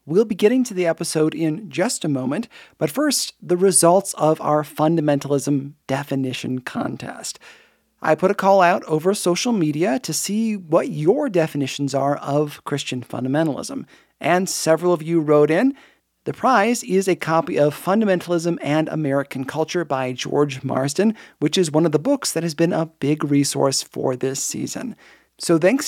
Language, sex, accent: English, male, American